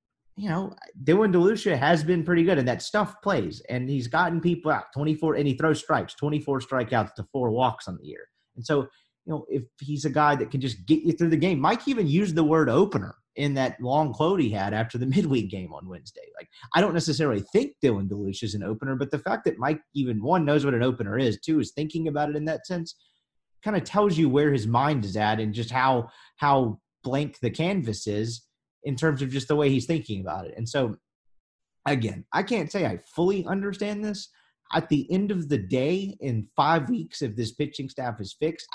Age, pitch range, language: 30-49, 120-160 Hz, English